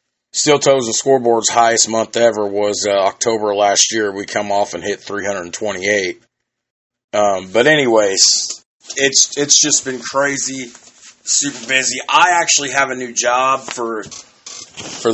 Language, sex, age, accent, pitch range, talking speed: English, male, 30-49, American, 105-130 Hz, 160 wpm